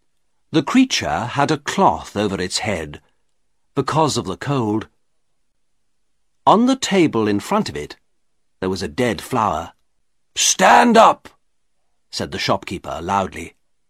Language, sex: Chinese, male